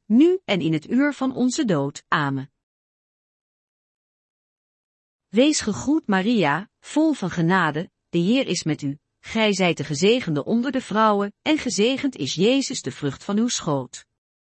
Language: Dutch